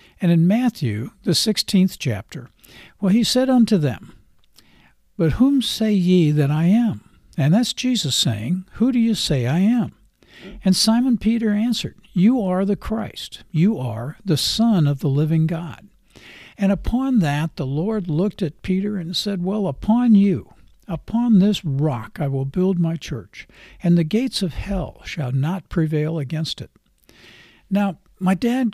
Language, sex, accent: English, male, American